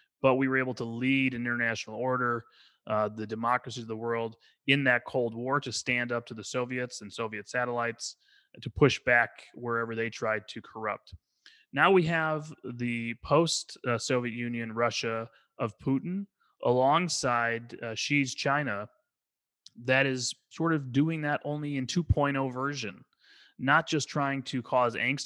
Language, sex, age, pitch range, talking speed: English, male, 20-39, 115-135 Hz, 155 wpm